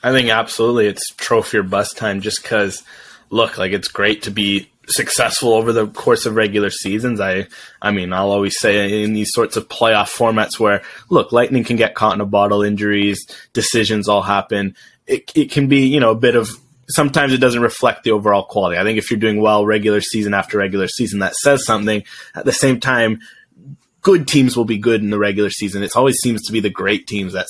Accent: American